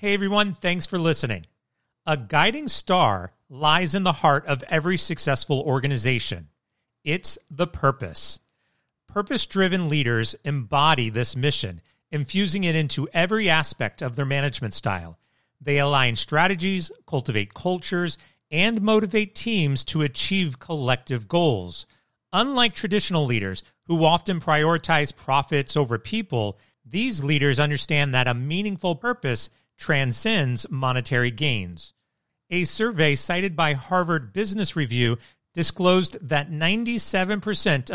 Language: English